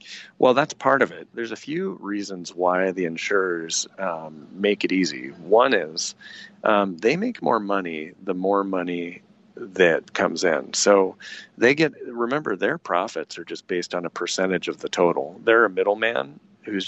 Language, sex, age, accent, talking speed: English, male, 40-59, American, 170 wpm